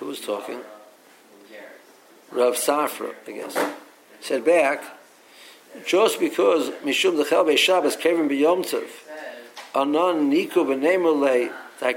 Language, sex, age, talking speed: English, male, 60-79, 115 wpm